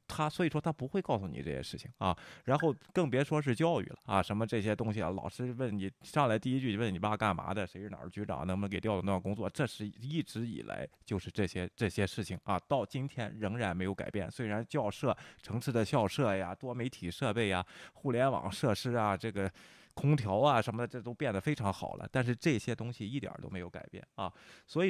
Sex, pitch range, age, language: male, 100-135 Hz, 20-39, Chinese